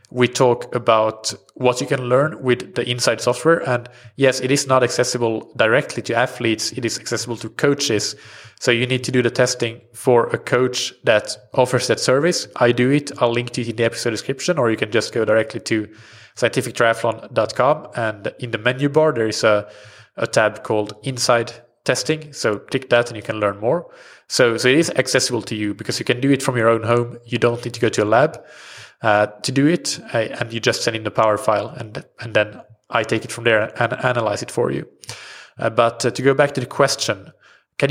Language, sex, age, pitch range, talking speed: English, male, 20-39, 115-130 Hz, 220 wpm